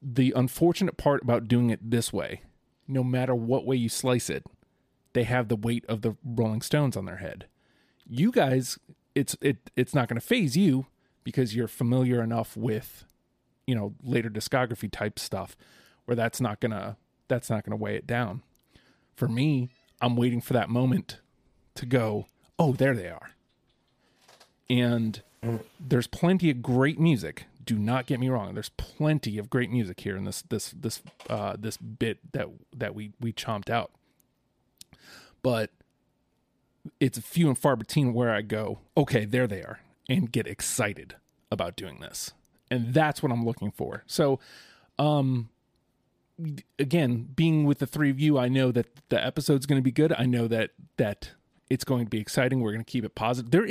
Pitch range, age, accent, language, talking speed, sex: 115-140 Hz, 30-49, American, English, 175 wpm, male